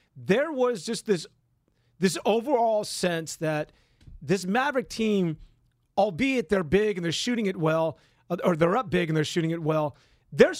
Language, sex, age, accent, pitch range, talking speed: English, male, 40-59, American, 160-235 Hz, 165 wpm